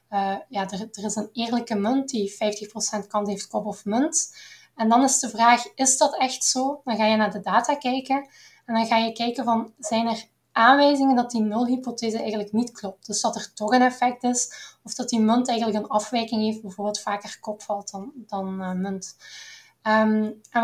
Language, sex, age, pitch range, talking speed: Dutch, female, 10-29, 215-255 Hz, 200 wpm